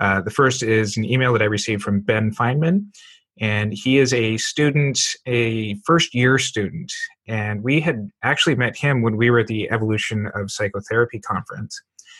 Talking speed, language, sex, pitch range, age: 170 wpm, English, male, 105-130 Hz, 30-49